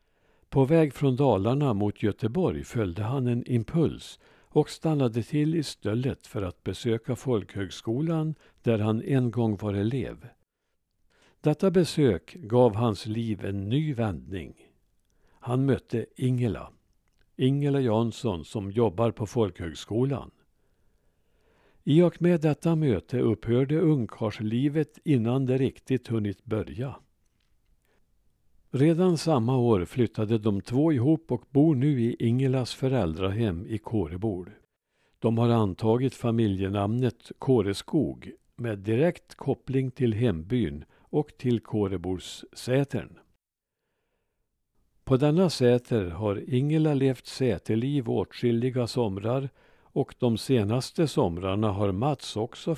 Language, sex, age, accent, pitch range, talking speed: Swedish, male, 60-79, Norwegian, 110-135 Hz, 110 wpm